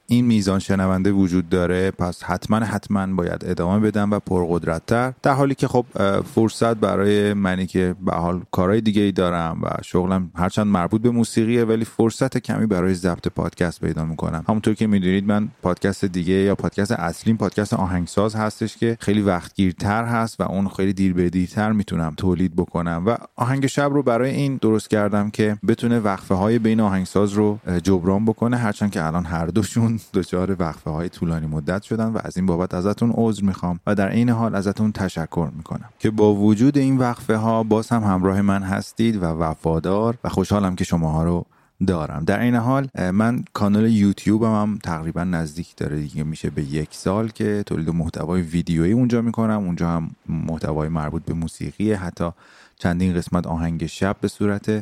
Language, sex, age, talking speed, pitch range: Persian, male, 30-49, 175 wpm, 90-110 Hz